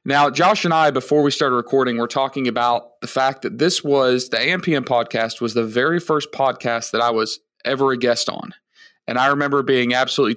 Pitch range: 125-155 Hz